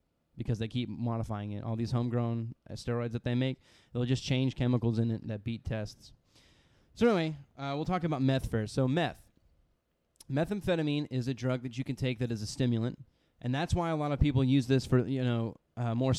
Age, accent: 20-39, American